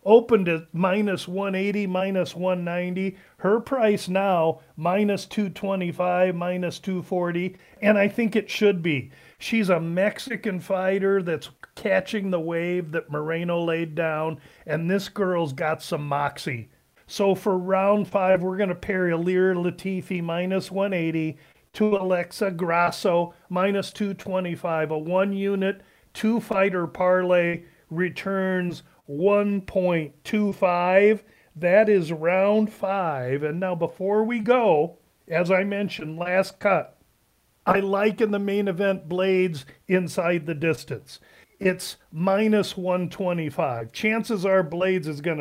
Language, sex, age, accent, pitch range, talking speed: English, male, 40-59, American, 165-195 Hz, 120 wpm